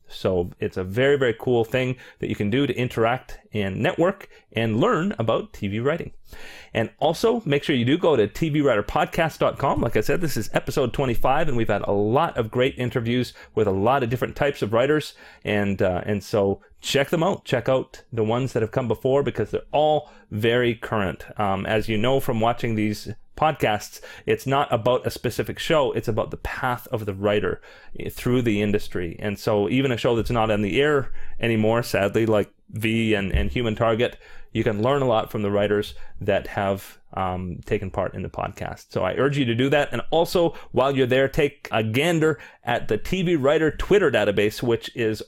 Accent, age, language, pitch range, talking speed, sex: American, 30-49, English, 105-140 Hz, 205 wpm, male